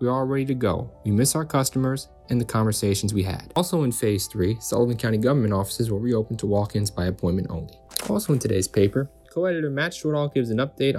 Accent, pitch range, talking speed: American, 100-125 Hz, 215 wpm